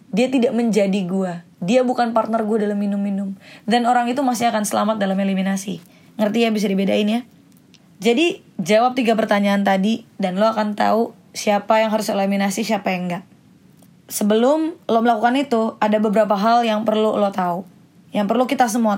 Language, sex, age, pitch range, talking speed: Indonesian, female, 20-39, 200-235 Hz, 170 wpm